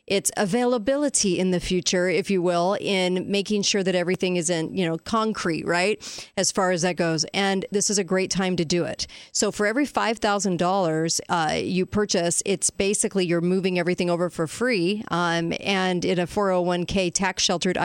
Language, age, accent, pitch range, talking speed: English, 40-59, American, 175-205 Hz, 180 wpm